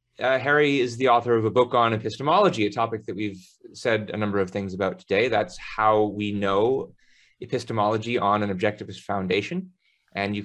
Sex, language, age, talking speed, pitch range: male, English, 30-49, 185 wpm, 100-120 Hz